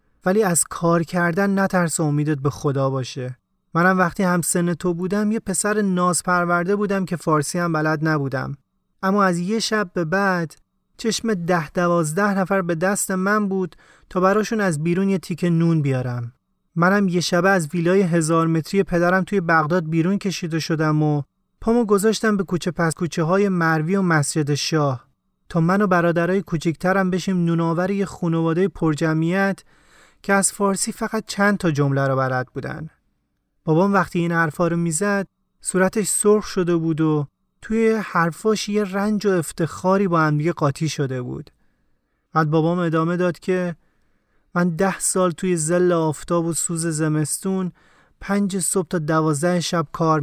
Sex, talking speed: male, 155 wpm